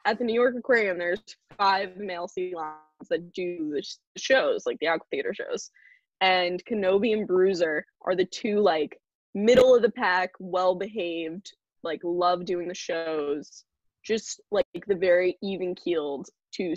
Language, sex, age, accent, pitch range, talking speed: English, female, 10-29, American, 175-230 Hz, 145 wpm